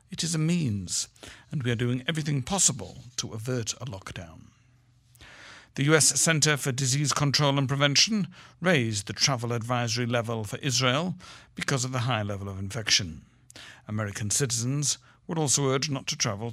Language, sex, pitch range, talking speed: English, male, 115-140 Hz, 160 wpm